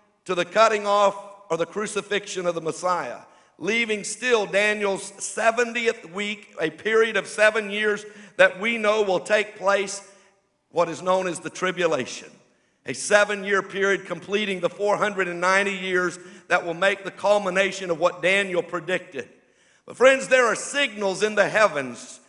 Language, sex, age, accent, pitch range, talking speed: English, male, 50-69, American, 195-230 Hz, 150 wpm